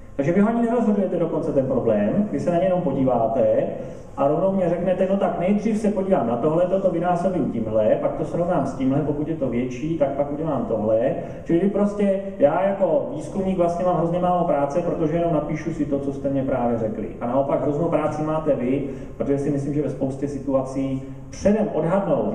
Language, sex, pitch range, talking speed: Czech, male, 120-170 Hz, 205 wpm